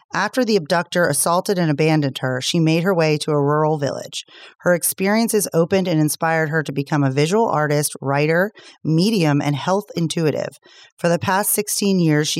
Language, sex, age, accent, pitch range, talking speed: English, female, 30-49, American, 140-175 Hz, 180 wpm